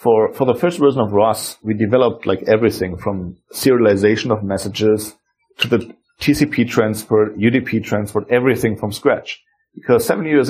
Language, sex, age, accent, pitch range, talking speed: English, male, 40-59, German, 105-125 Hz, 155 wpm